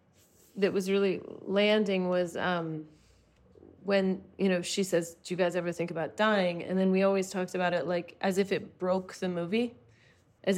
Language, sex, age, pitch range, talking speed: English, female, 30-49, 180-225 Hz, 185 wpm